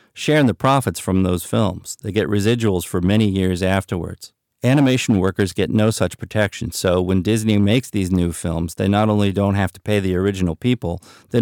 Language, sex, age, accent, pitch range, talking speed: English, male, 40-59, American, 95-120 Hz, 195 wpm